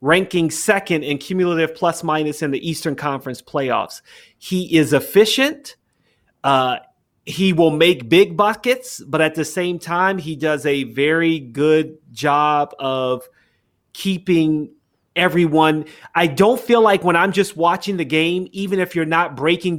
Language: English